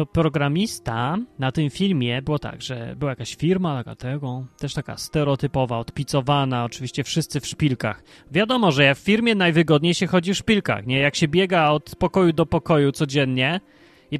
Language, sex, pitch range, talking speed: Polish, male, 135-185 Hz, 160 wpm